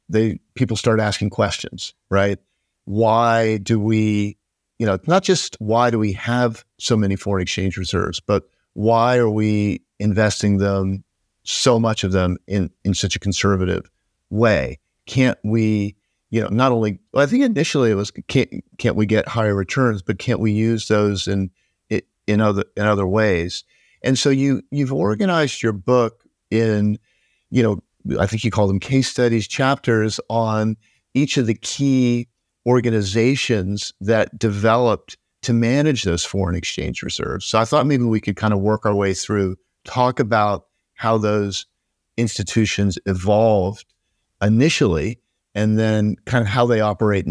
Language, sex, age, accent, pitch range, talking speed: English, male, 50-69, American, 100-115 Hz, 155 wpm